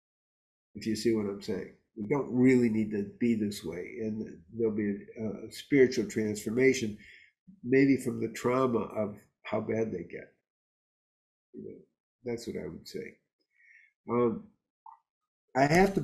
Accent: American